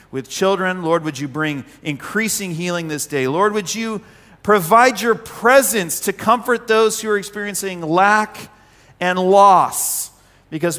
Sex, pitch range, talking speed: male, 155-215 Hz, 145 wpm